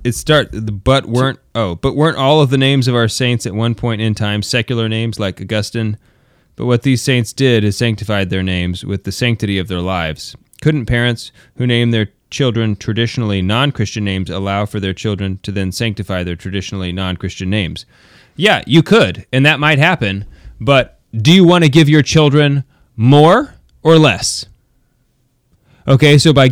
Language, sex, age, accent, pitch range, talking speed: English, male, 30-49, American, 110-150 Hz, 180 wpm